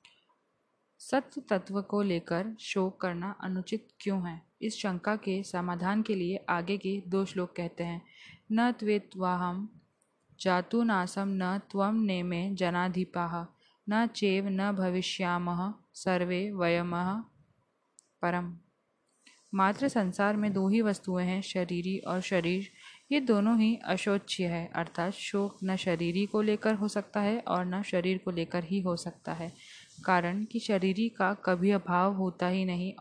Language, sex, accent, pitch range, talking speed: Hindi, female, native, 180-210 Hz, 140 wpm